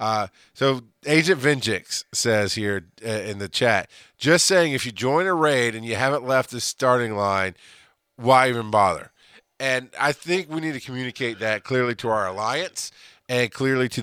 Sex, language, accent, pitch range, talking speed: male, English, American, 110-145 Hz, 175 wpm